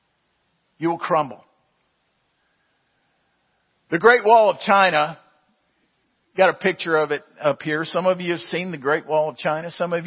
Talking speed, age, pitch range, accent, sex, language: 160 wpm, 50-69, 145-185 Hz, American, male, English